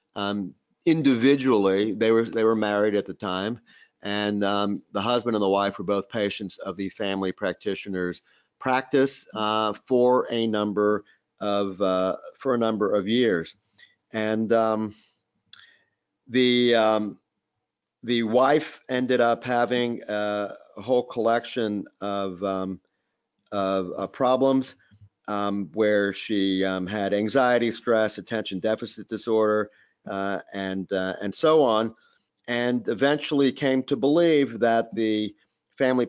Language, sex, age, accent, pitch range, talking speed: English, male, 40-59, American, 100-120 Hz, 130 wpm